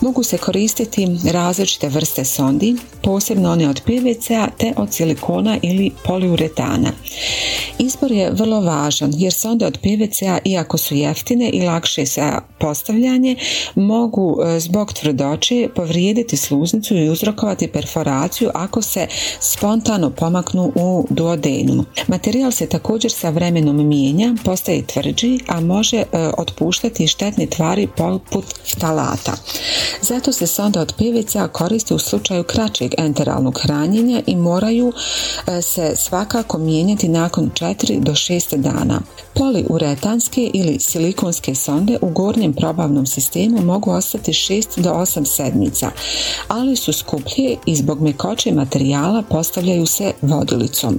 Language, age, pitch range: Croatian, 40-59, 160-225 Hz